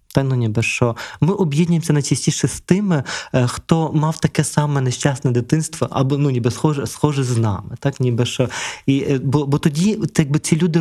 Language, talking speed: Ukrainian, 180 wpm